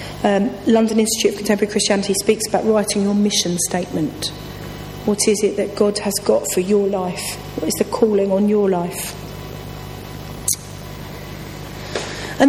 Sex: female